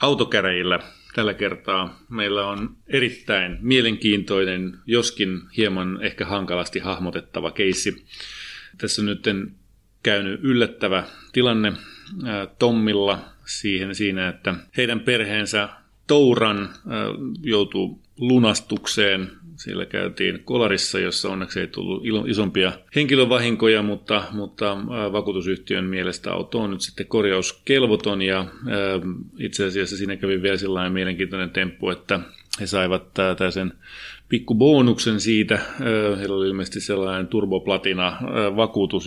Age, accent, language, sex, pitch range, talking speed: 30-49, native, Finnish, male, 95-110 Hz, 100 wpm